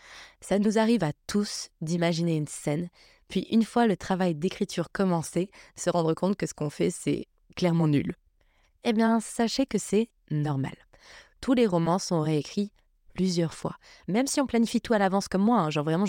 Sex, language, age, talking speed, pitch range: female, French, 20-39, 185 wpm, 165-200 Hz